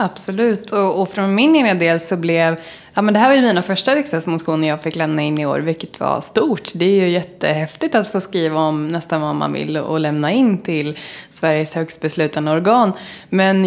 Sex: female